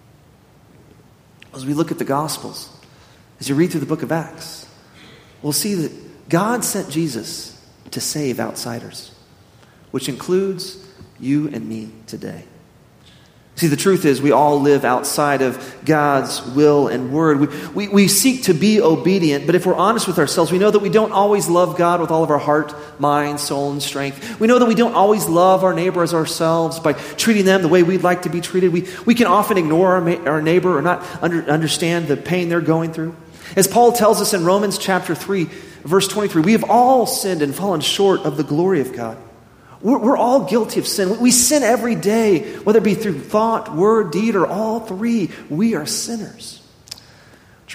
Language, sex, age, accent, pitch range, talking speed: English, male, 30-49, American, 145-200 Hz, 195 wpm